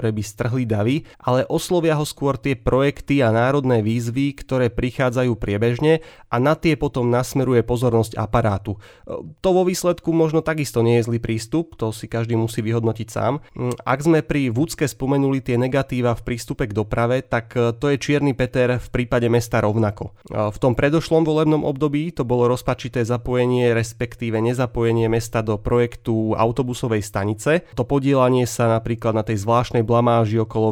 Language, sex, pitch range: Slovak, male, 115-140 Hz